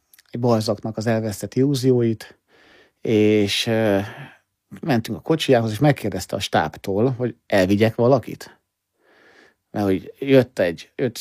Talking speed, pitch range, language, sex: 110 wpm, 95-130 Hz, Hungarian, male